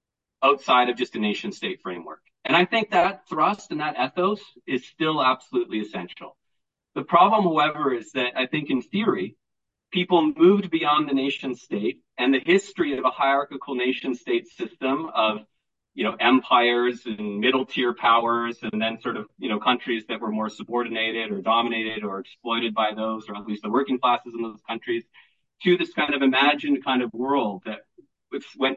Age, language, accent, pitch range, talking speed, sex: 30-49, English, American, 110-150 Hz, 175 wpm, male